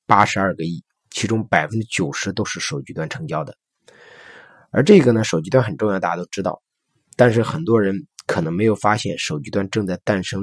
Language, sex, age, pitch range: Chinese, male, 20-39, 100-130 Hz